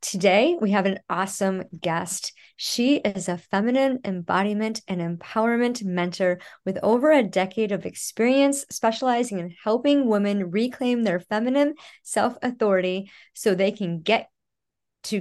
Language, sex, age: English, male, 30-49